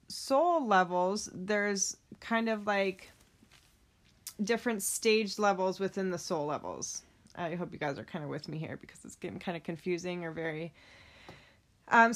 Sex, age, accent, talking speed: female, 20-39, American, 160 wpm